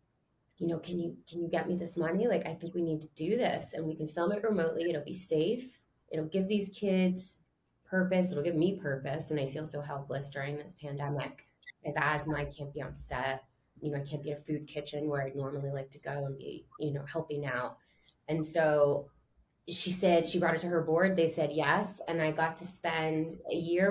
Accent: American